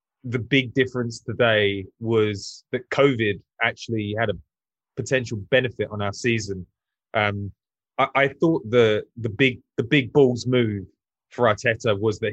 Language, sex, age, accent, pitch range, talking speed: English, male, 20-39, British, 110-130 Hz, 145 wpm